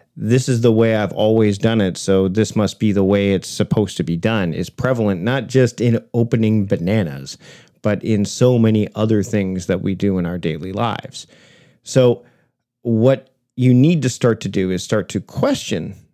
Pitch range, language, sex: 105-130 Hz, English, male